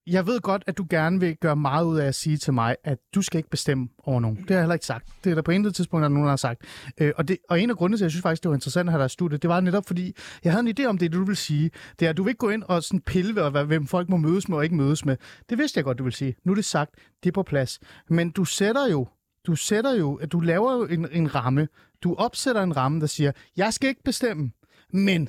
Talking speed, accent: 305 wpm, native